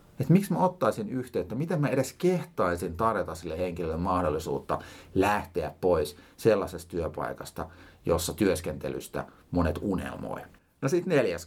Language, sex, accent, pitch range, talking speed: Finnish, male, native, 85-130 Hz, 125 wpm